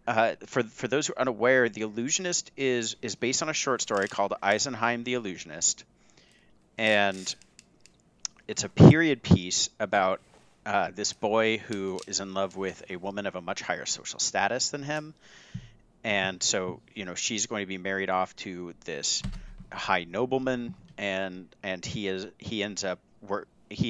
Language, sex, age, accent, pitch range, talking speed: English, male, 40-59, American, 95-115 Hz, 165 wpm